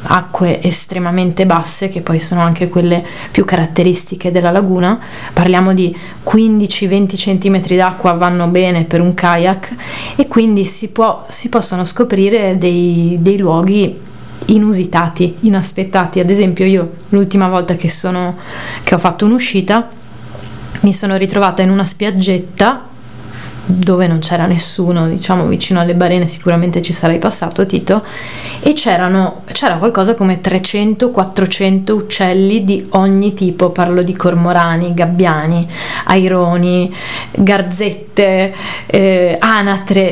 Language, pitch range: Italian, 175-195 Hz